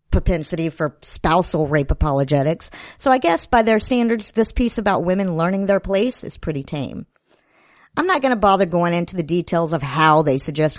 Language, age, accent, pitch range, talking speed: English, 50-69, American, 165-235 Hz, 190 wpm